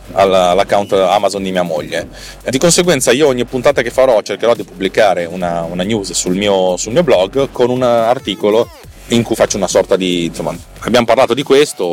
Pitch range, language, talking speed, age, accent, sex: 95-120 Hz, Italian, 175 wpm, 30-49, native, male